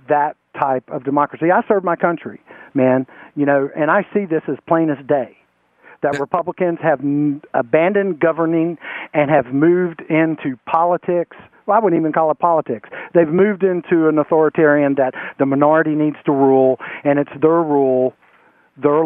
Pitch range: 150-200 Hz